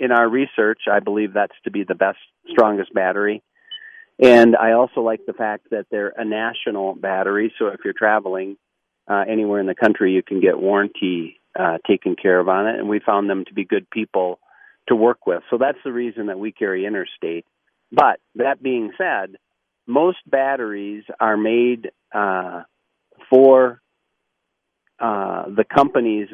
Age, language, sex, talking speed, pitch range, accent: 40-59, English, male, 170 wpm, 100-130 Hz, American